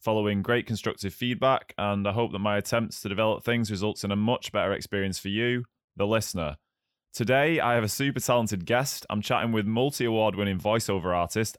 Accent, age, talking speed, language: British, 20-39, 190 wpm, English